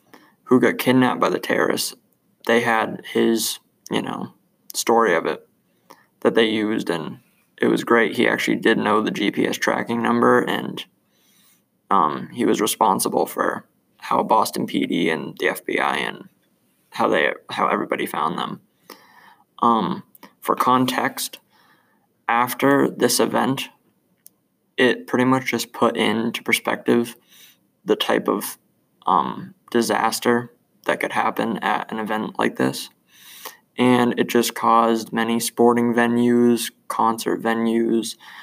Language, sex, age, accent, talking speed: English, male, 20-39, American, 130 wpm